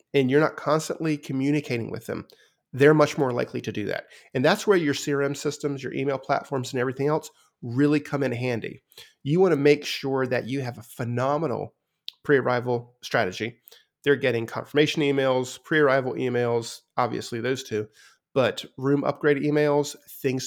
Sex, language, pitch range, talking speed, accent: male, English, 125-150 Hz, 165 wpm, American